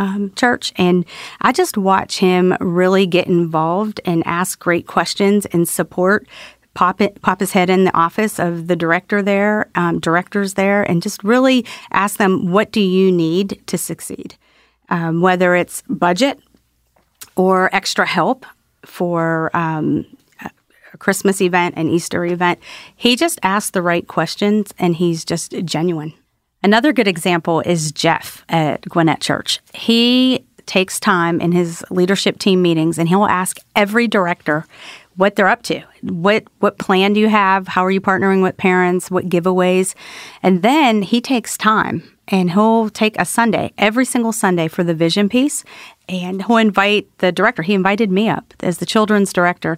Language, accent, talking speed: English, American, 165 wpm